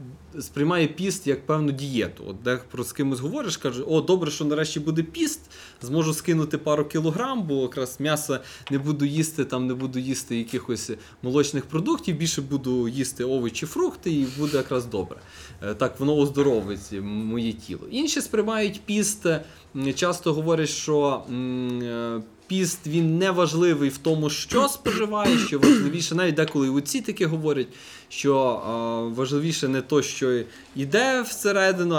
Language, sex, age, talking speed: Ukrainian, male, 20-39, 145 wpm